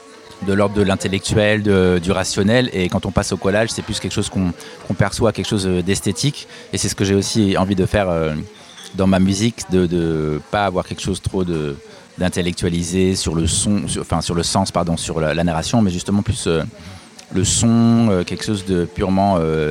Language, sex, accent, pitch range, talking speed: French, male, French, 85-105 Hz, 215 wpm